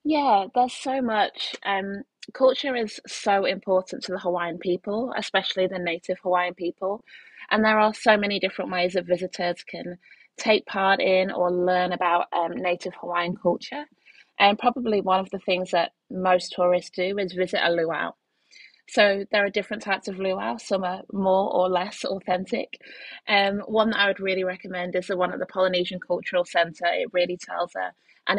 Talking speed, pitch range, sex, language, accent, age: 180 wpm, 180-210 Hz, female, English, British, 20-39